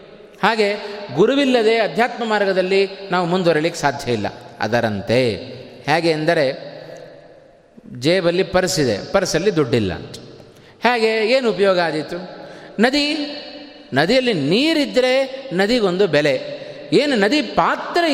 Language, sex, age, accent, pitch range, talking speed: Kannada, male, 30-49, native, 165-220 Hz, 95 wpm